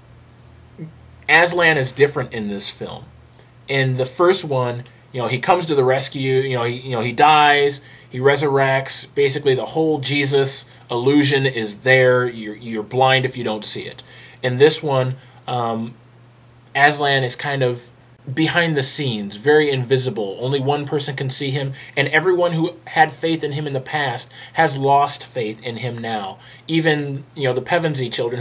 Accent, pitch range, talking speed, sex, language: American, 120-150 Hz, 175 wpm, male, English